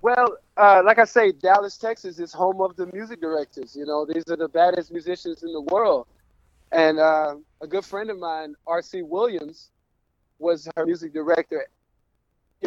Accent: American